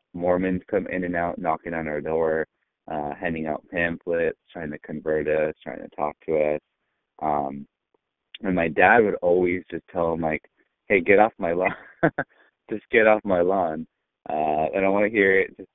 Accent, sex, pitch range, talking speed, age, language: American, male, 75-90 Hz, 190 wpm, 20-39, English